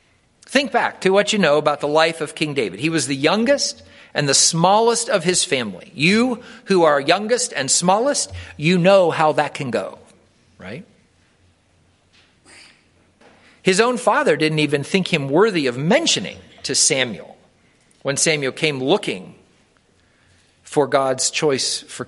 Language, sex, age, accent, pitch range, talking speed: English, male, 50-69, American, 155-230 Hz, 150 wpm